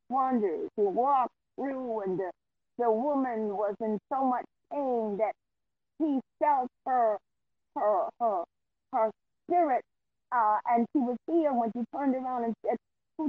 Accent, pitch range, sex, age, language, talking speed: American, 225-310 Hz, female, 40-59, English, 140 wpm